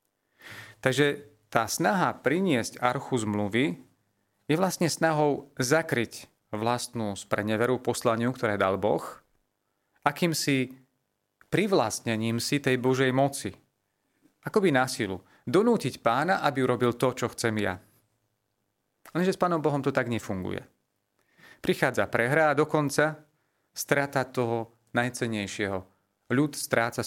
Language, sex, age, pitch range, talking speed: Slovak, male, 30-49, 105-140 Hz, 110 wpm